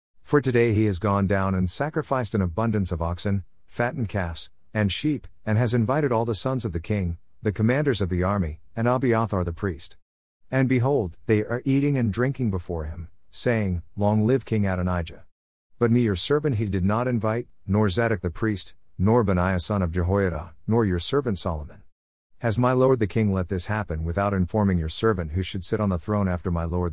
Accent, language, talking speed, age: American, English, 200 wpm, 50-69